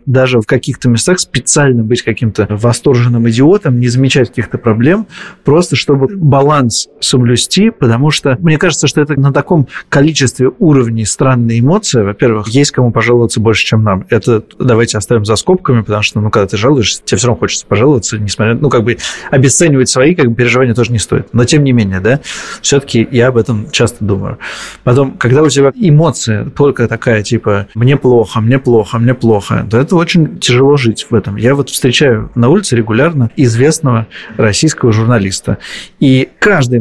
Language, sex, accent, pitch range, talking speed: Russian, male, native, 115-145 Hz, 175 wpm